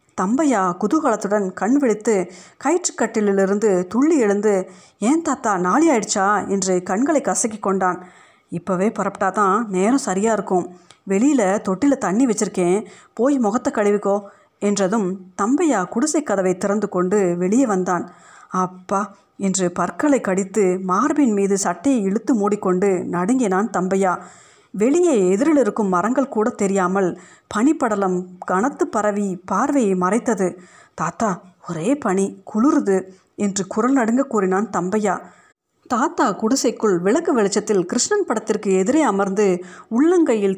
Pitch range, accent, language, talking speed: 185-240 Hz, native, Tamil, 110 wpm